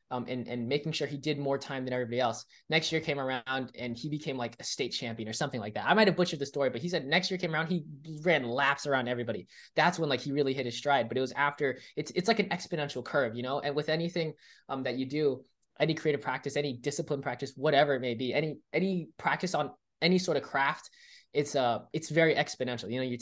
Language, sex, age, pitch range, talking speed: English, male, 20-39, 125-160 Hz, 250 wpm